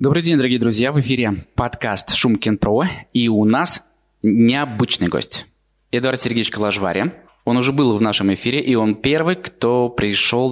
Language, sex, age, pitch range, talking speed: Russian, male, 20-39, 105-130 Hz, 160 wpm